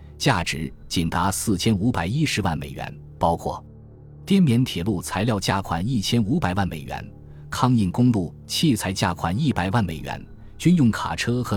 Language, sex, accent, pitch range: Chinese, male, native, 85-120 Hz